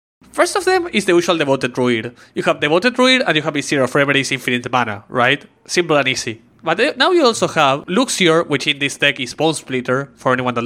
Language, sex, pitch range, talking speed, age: English, male, 130-180 Hz, 230 wpm, 20-39